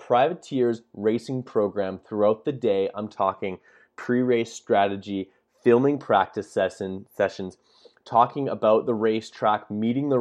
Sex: male